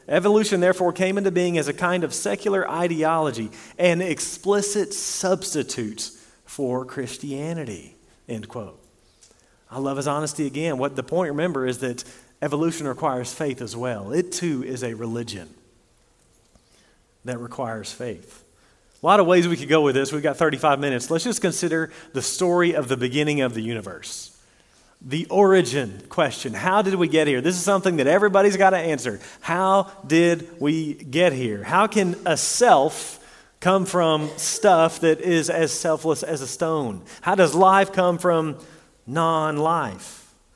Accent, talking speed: American, 160 wpm